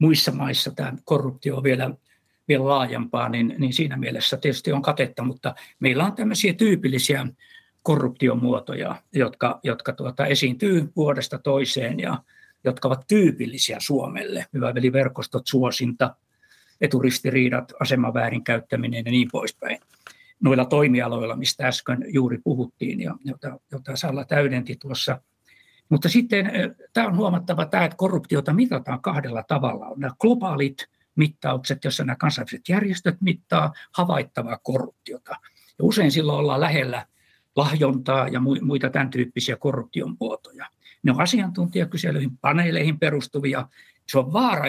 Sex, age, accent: male, 60-79, native